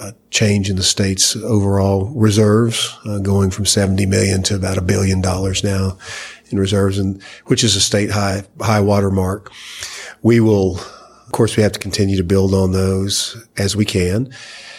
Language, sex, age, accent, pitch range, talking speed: English, male, 40-59, American, 95-110 Hz, 175 wpm